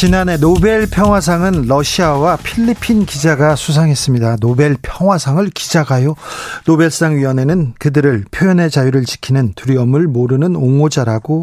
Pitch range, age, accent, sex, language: 130-175 Hz, 40-59, native, male, Korean